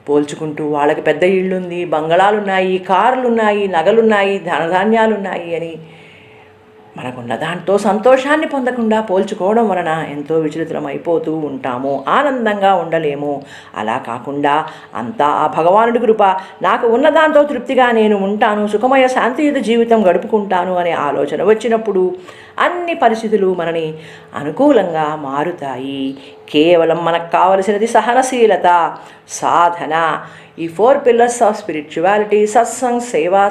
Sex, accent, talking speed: female, native, 105 wpm